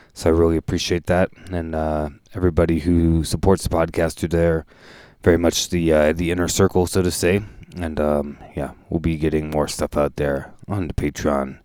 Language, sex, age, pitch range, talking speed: English, male, 20-39, 75-90 Hz, 190 wpm